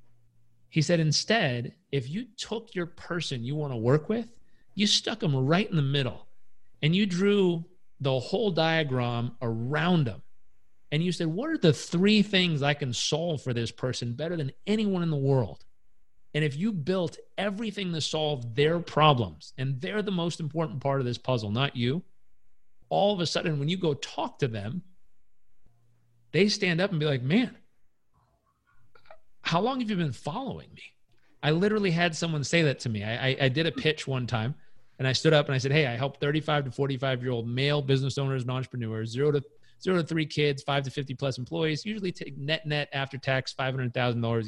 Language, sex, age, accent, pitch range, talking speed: English, male, 40-59, American, 120-165 Hz, 200 wpm